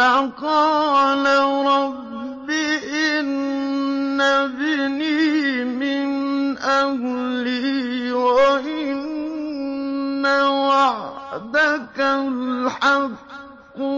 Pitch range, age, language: 260-280 Hz, 50-69, Arabic